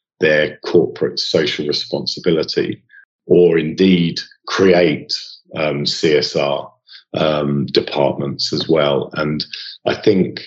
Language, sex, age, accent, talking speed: English, male, 40-59, British, 90 wpm